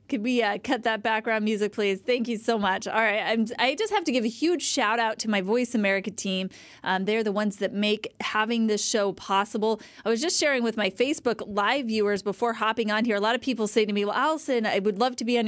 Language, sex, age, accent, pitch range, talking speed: English, female, 30-49, American, 200-245 Hz, 255 wpm